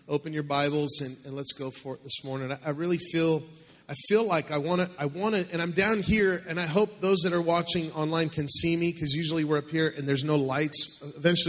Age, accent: 30-49, American